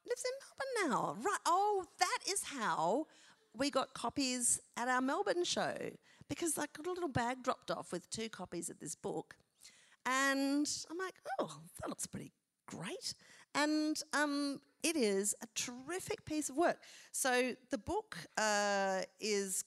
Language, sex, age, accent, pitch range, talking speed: English, female, 40-59, Australian, 175-270 Hz, 160 wpm